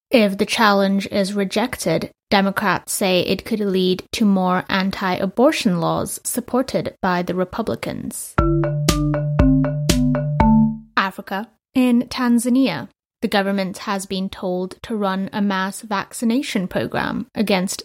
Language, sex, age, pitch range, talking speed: English, female, 20-39, 195-225 Hz, 110 wpm